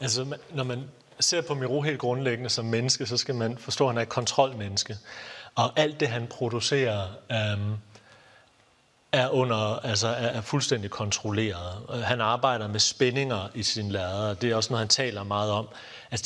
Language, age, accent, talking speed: Danish, 30-49, native, 180 wpm